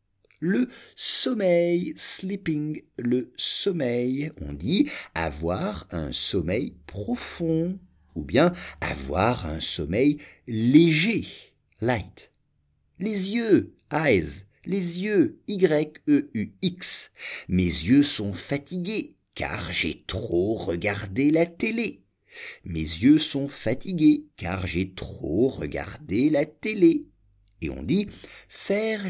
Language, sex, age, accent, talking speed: English, male, 50-69, French, 105 wpm